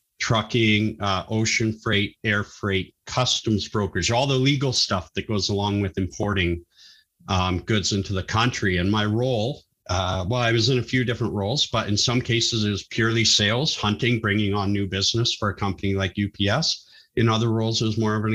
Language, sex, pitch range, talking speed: English, male, 95-115 Hz, 195 wpm